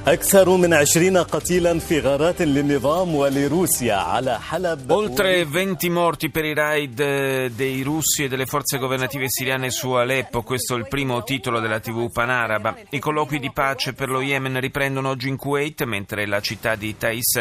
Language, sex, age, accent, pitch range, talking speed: Italian, male, 40-59, native, 110-150 Hz, 135 wpm